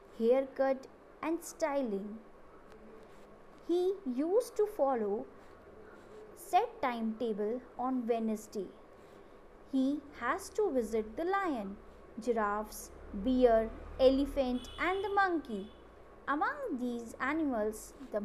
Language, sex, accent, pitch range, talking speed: English, female, Indian, 230-360 Hz, 90 wpm